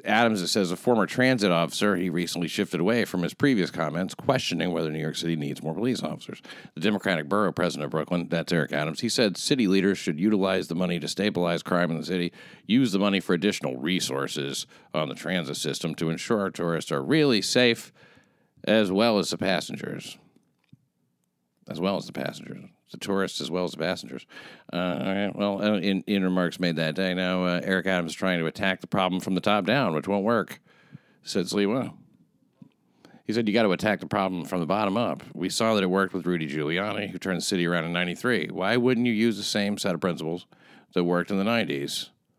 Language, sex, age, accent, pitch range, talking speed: English, male, 50-69, American, 85-100 Hz, 210 wpm